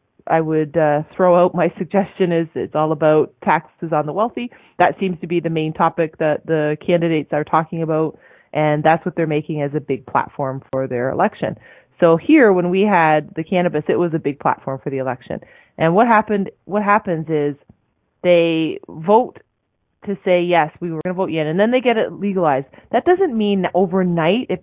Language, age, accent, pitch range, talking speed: English, 30-49, American, 155-190 Hz, 200 wpm